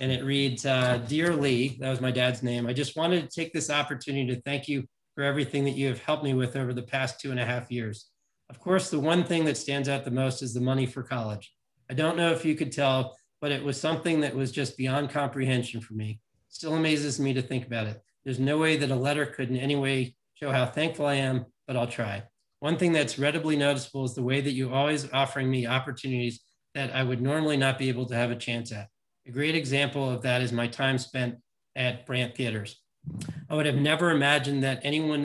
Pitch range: 125-145 Hz